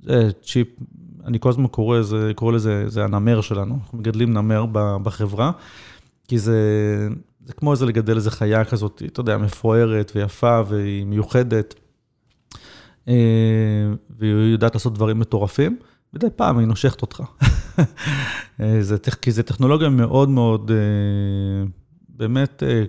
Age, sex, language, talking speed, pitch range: 30-49, male, Hebrew, 130 wpm, 105-125 Hz